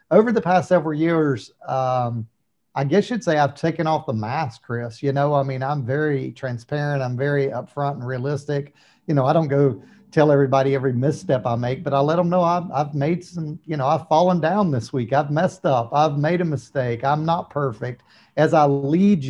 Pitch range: 135-170 Hz